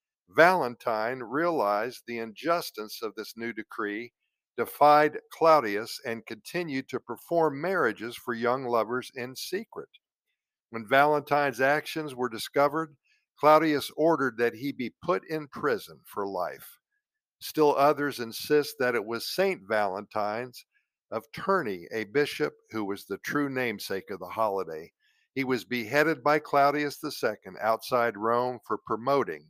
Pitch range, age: 120-155 Hz, 50-69